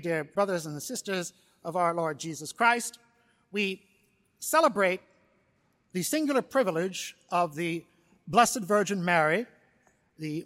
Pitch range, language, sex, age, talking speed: 175-235 Hz, English, male, 60-79, 115 wpm